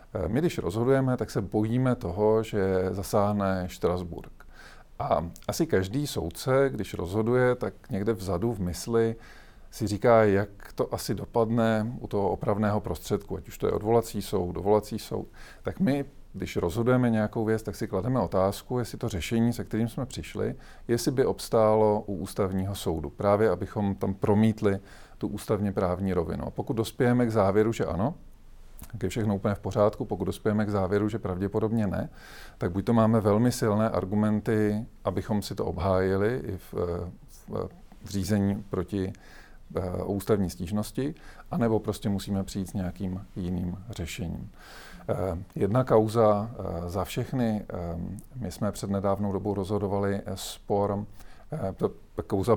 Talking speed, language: 145 wpm, Czech